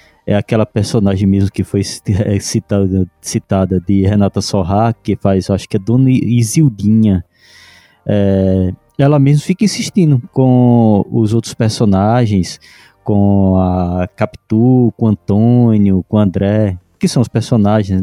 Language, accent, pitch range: Portuguese, Brazilian, 105-150 Hz